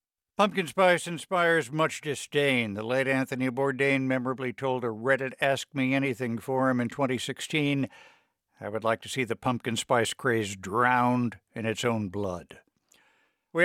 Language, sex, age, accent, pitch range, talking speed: English, male, 60-79, American, 120-150 Hz, 150 wpm